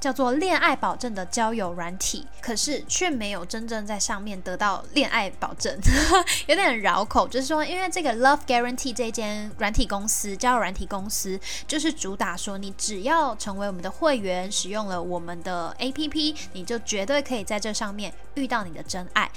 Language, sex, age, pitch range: Chinese, female, 10-29, 195-265 Hz